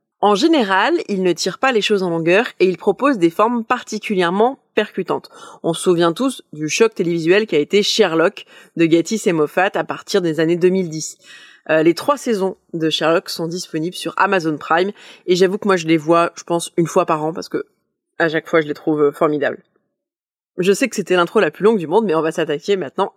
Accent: French